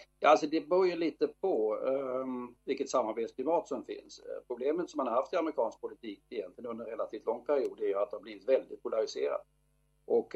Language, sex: English, male